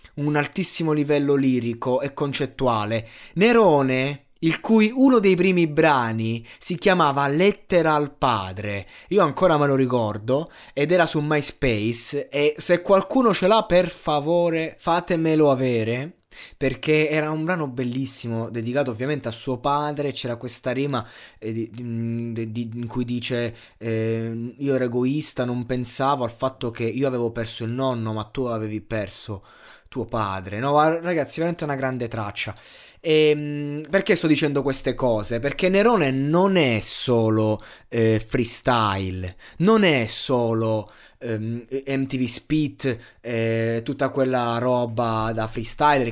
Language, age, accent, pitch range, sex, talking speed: Italian, 20-39, native, 115-150 Hz, male, 135 wpm